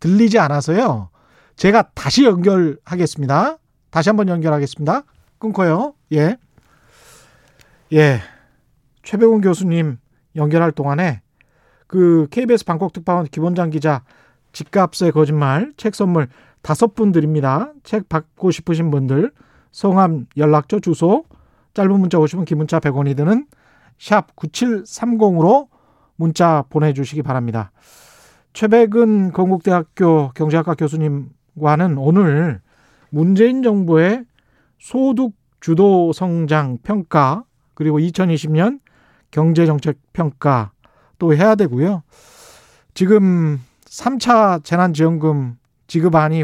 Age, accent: 40-59, native